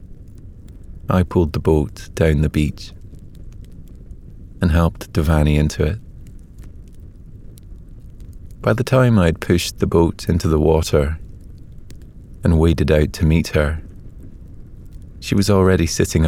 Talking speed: 120 wpm